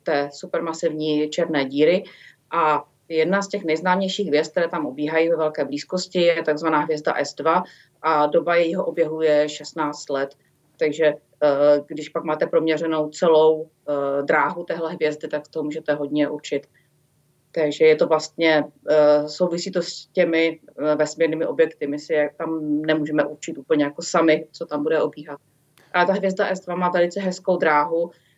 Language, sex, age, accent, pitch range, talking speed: Czech, female, 30-49, native, 150-165 Hz, 150 wpm